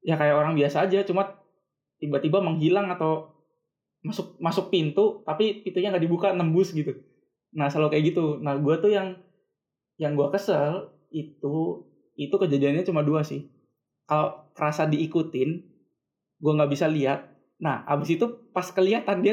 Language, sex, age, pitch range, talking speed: Indonesian, male, 20-39, 150-185 Hz, 150 wpm